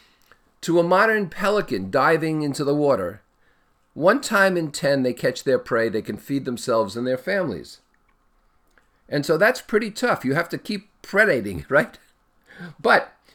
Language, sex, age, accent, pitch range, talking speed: English, male, 50-69, American, 135-185 Hz, 155 wpm